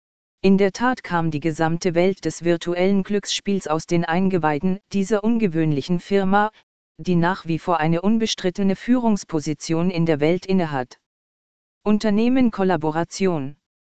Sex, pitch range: female, 165-200 Hz